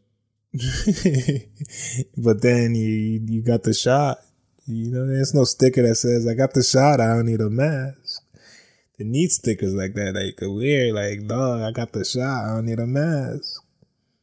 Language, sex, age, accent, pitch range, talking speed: English, male, 20-39, American, 110-130 Hz, 175 wpm